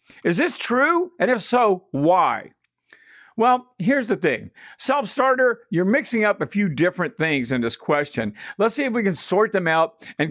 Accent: American